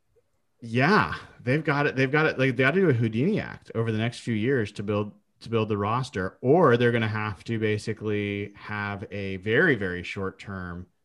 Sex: male